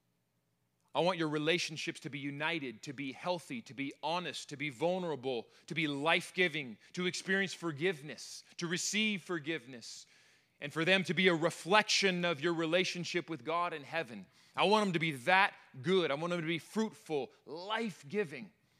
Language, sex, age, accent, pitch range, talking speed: English, male, 30-49, American, 150-190 Hz, 170 wpm